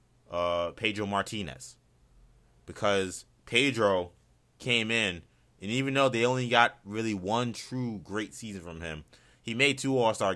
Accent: American